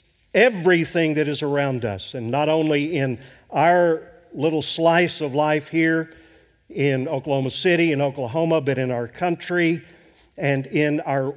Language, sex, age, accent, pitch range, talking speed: English, male, 50-69, American, 140-175 Hz, 140 wpm